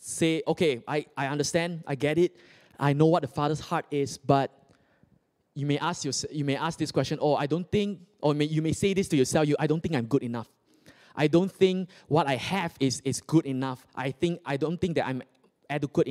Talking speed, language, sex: 225 wpm, English, male